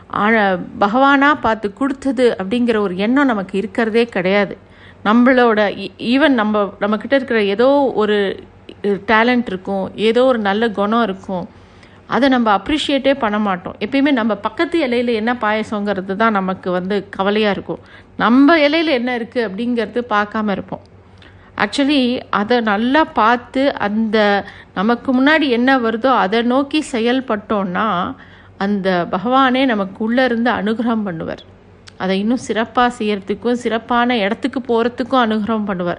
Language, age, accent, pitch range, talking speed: Tamil, 50-69, native, 205-260 Hz, 125 wpm